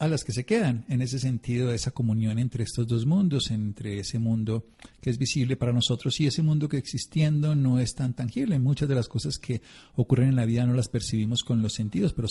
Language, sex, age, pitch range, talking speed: Spanish, male, 50-69, 105-130 Hz, 230 wpm